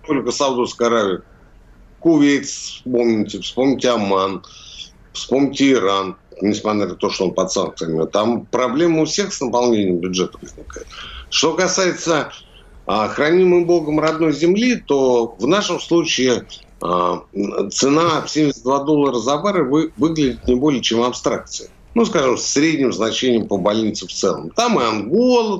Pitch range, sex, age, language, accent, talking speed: 105-155 Hz, male, 60-79, Russian, native, 140 wpm